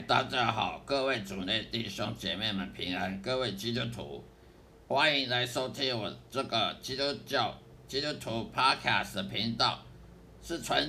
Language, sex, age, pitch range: Chinese, male, 50-69, 105-135 Hz